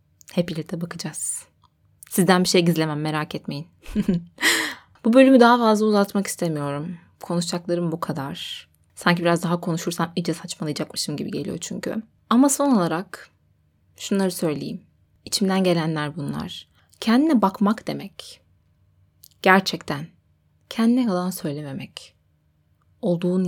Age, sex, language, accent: 20-39, female, Turkish, native